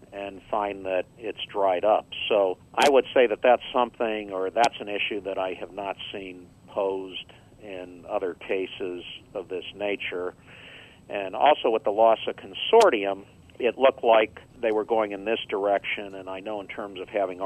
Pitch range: 90-110 Hz